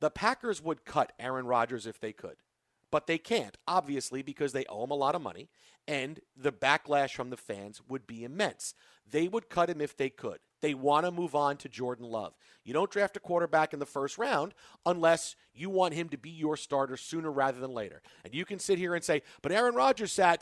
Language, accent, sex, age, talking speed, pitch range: English, American, male, 40-59, 225 wpm, 135-175 Hz